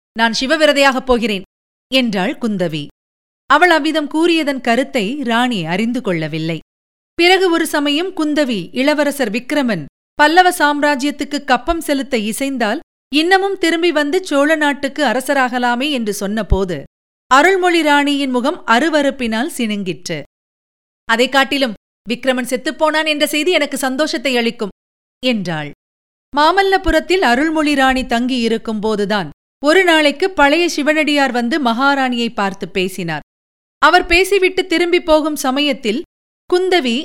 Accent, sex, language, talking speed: native, female, Tamil, 105 wpm